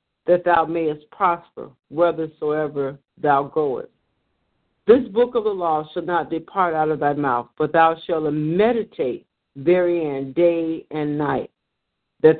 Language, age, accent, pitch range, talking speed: English, 50-69, American, 155-185 Hz, 135 wpm